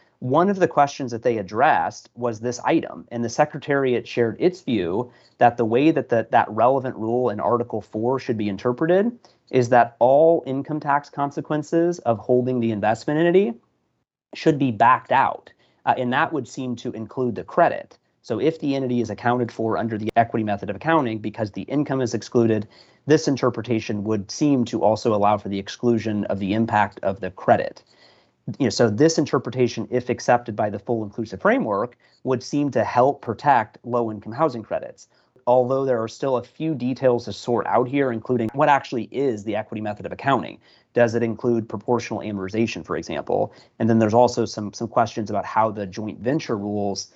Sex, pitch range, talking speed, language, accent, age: male, 110-135 Hz, 185 wpm, English, American, 30-49